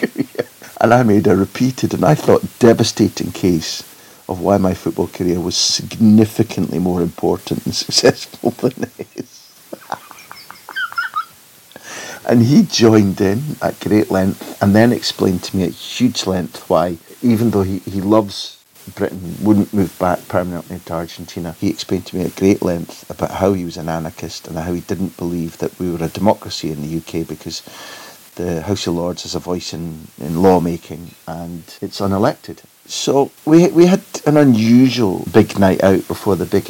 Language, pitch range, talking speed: English, 90-115 Hz, 170 wpm